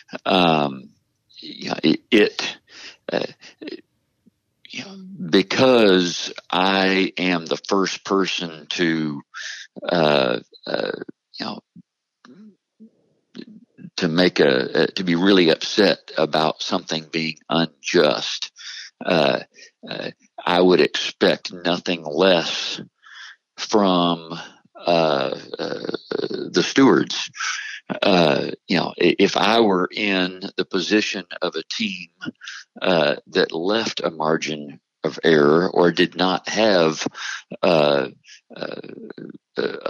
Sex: male